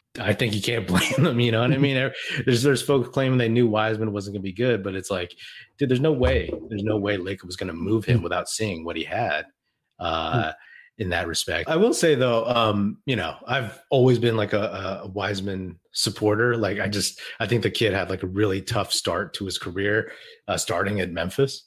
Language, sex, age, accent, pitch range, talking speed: English, male, 30-49, American, 95-125 Hz, 235 wpm